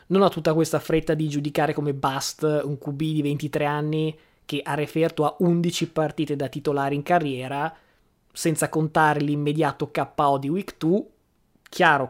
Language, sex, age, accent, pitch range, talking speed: Italian, male, 20-39, native, 145-170 Hz, 160 wpm